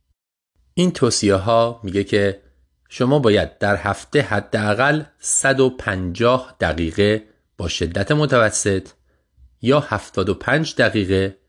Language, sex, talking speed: Persian, male, 95 wpm